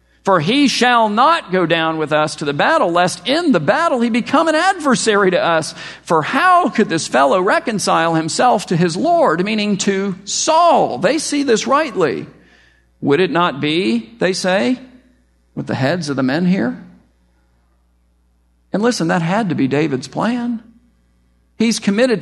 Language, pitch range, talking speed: English, 130-205 Hz, 165 wpm